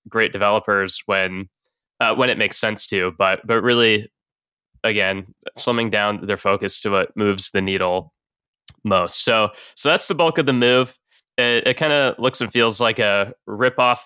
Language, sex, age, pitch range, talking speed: English, male, 10-29, 100-130 Hz, 175 wpm